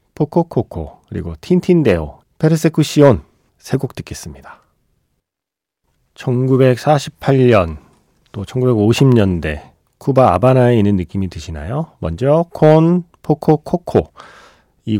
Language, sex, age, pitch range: Korean, male, 40-59, 95-145 Hz